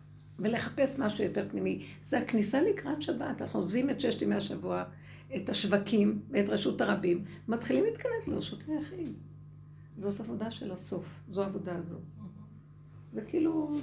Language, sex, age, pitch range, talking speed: Hebrew, female, 60-79, 155-230 Hz, 140 wpm